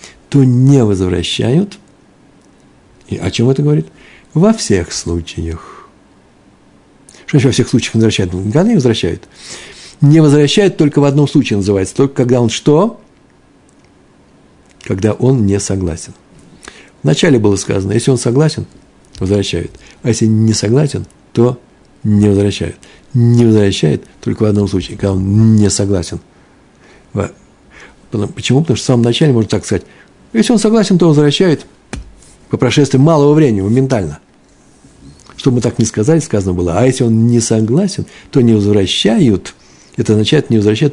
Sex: male